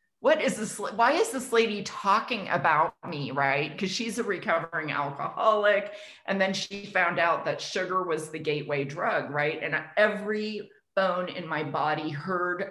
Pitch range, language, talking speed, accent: 155-200 Hz, English, 165 wpm, American